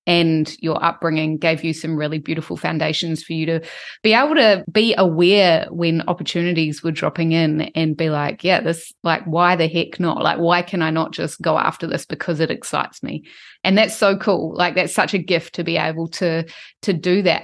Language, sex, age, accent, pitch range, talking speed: English, female, 20-39, Australian, 165-195 Hz, 210 wpm